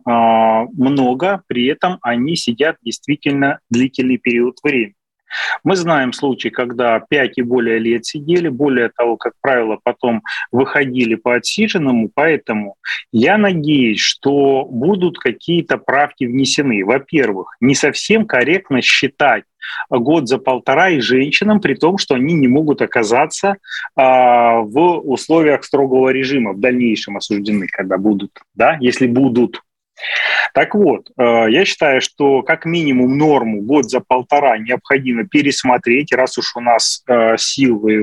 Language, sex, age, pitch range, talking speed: Russian, male, 30-49, 115-145 Hz, 125 wpm